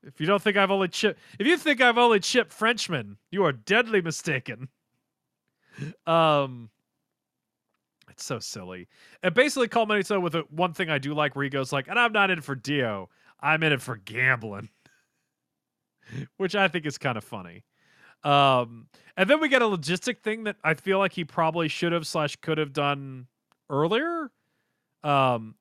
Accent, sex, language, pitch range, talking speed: American, male, English, 130-185 Hz, 180 wpm